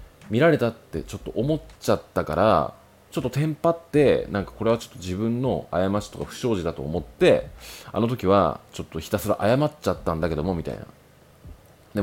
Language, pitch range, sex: Japanese, 80-110 Hz, male